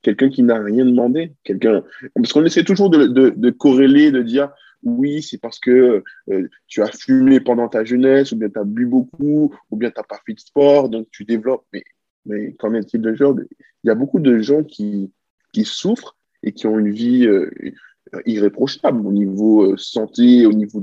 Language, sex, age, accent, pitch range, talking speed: French, male, 20-39, French, 115-145 Hz, 205 wpm